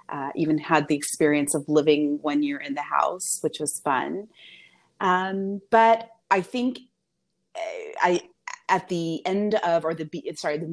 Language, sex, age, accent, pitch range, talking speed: English, female, 30-49, American, 145-190 Hz, 160 wpm